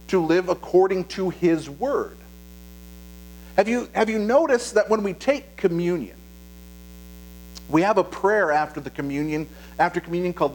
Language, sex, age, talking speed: English, male, 50-69, 150 wpm